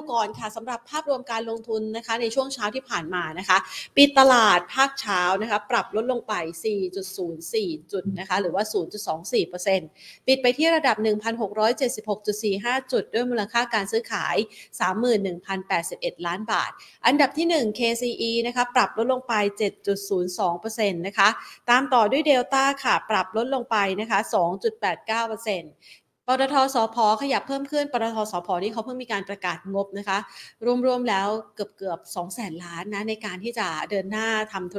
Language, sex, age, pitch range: Thai, female, 30-49, 195-235 Hz